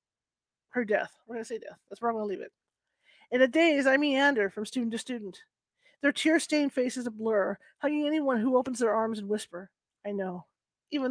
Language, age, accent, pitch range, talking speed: English, 40-59, American, 215-275 Hz, 215 wpm